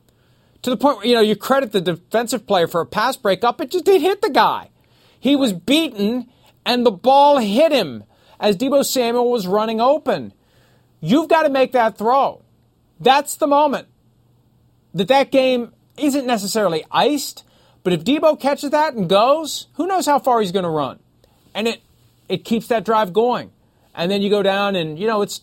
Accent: American